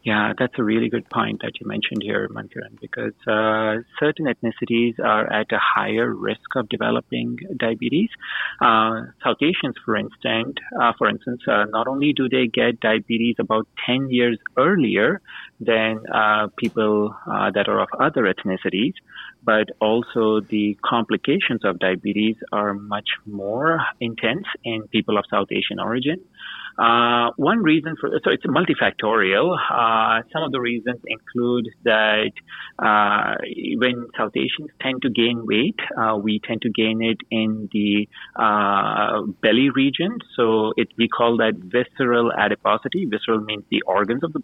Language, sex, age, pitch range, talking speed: English, male, 30-49, 105-120 Hz, 155 wpm